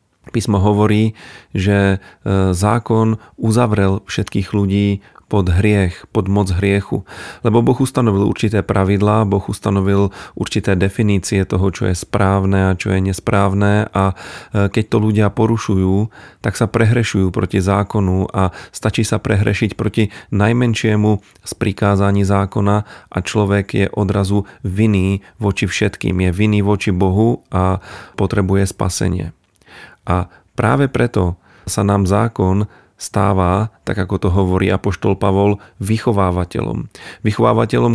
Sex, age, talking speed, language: male, 40-59, 120 wpm, Slovak